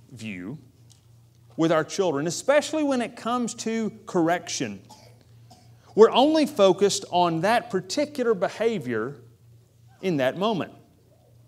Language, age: English, 40-59